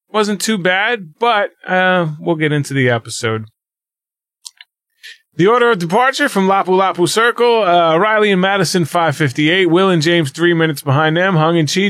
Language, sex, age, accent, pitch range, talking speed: English, male, 30-49, American, 130-185 Hz, 165 wpm